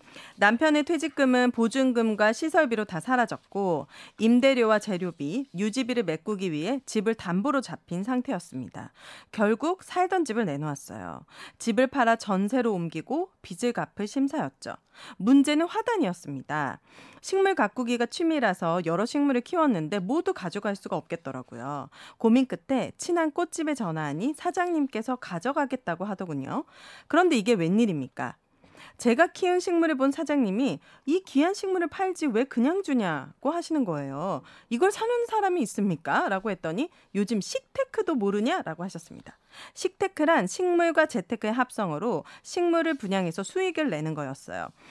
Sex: female